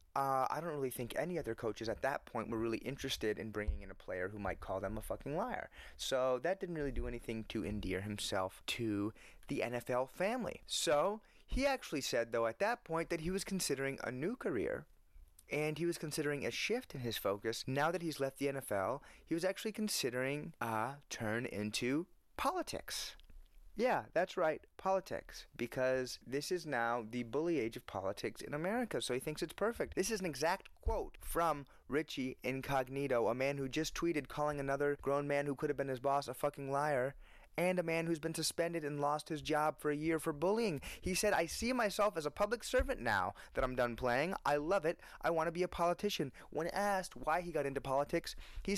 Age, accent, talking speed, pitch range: 30-49, American, 210 wpm, 125-175 Hz